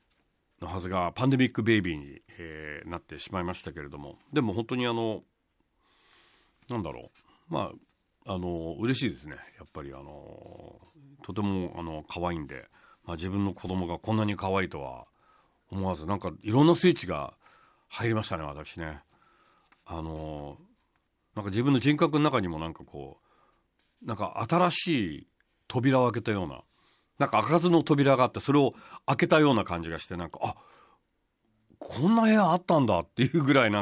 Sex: male